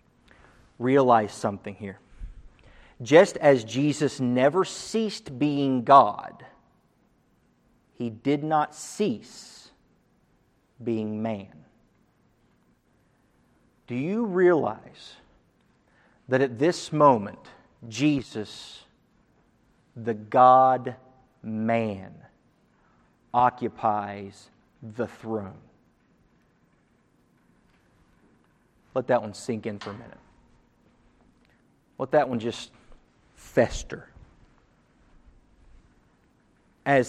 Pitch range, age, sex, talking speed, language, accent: 110-135 Hz, 50-69, male, 70 wpm, English, American